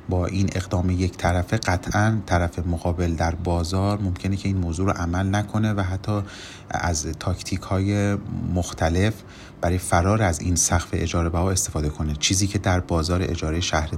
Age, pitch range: 30-49, 85-105 Hz